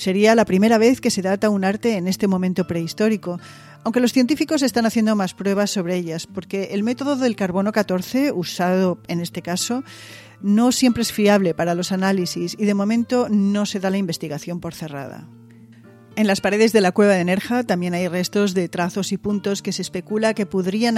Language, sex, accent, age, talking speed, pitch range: Spanish, female, Spanish, 40-59, 195 wpm, 175-215 Hz